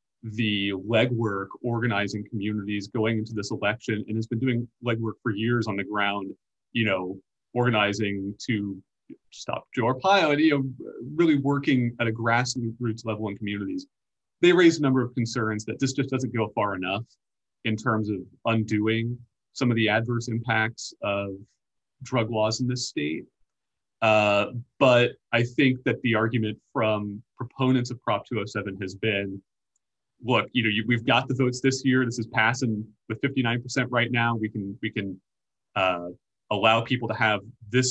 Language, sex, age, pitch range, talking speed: English, male, 30-49, 105-125 Hz, 165 wpm